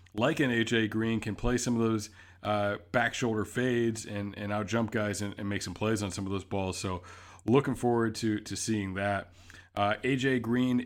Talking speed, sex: 210 wpm, male